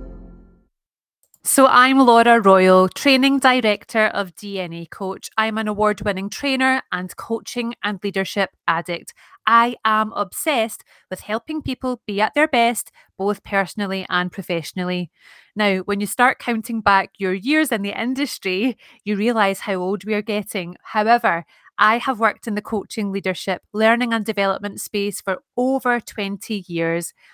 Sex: female